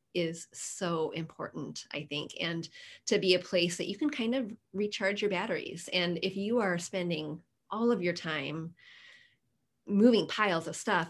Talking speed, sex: 170 wpm, female